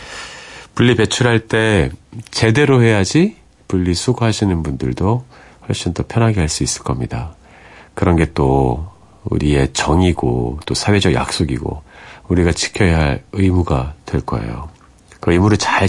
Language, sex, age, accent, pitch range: Korean, male, 40-59, native, 75-120 Hz